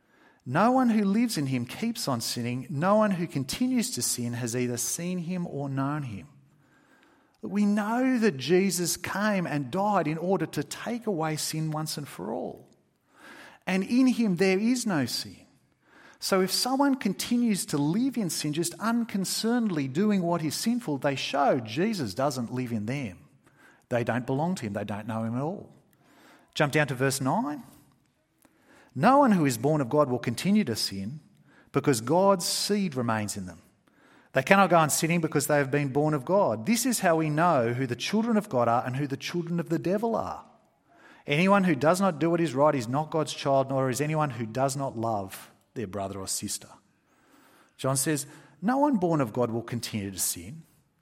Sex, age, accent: male, 40-59, Australian